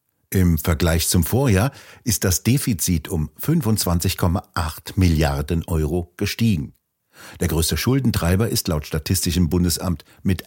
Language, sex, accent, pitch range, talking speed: German, male, German, 85-110 Hz, 115 wpm